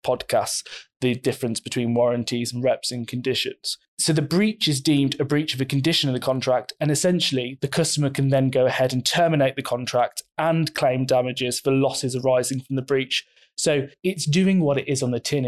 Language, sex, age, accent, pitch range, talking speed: English, male, 20-39, British, 125-150 Hz, 200 wpm